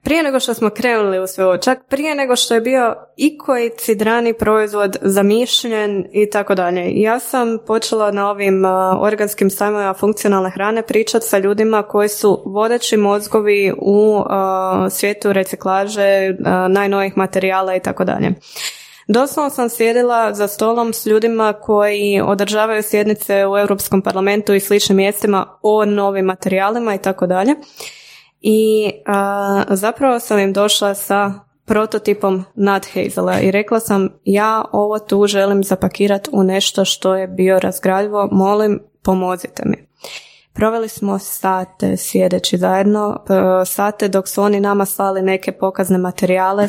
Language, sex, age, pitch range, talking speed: Croatian, female, 20-39, 195-215 Hz, 140 wpm